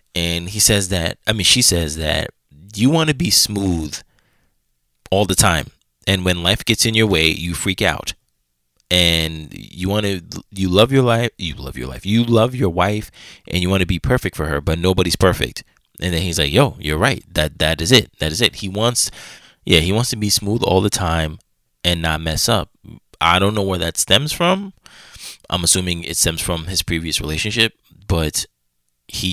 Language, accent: English, American